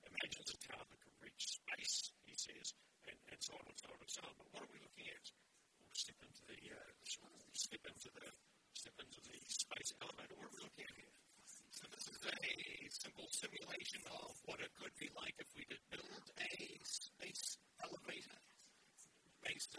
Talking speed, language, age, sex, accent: 195 wpm, English, 50-69, male, American